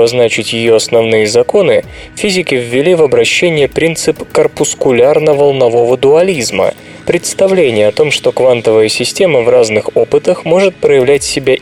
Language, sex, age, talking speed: Russian, male, 20-39, 125 wpm